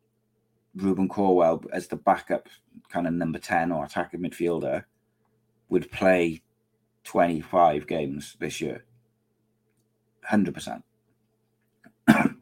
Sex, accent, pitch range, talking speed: male, British, 95-110 Hz, 90 wpm